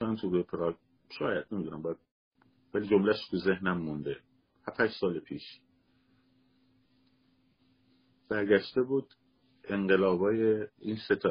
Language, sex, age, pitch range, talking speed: Persian, male, 50-69, 85-130 Hz, 80 wpm